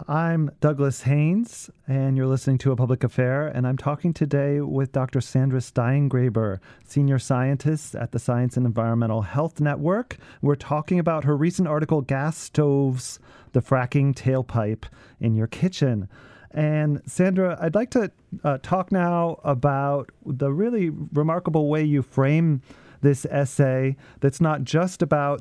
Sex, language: male, English